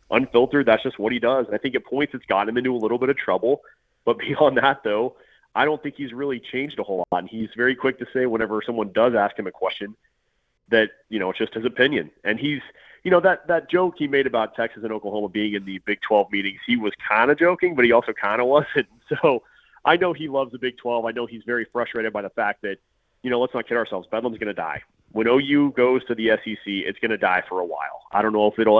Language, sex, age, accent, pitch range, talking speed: English, male, 30-49, American, 105-130 Hz, 265 wpm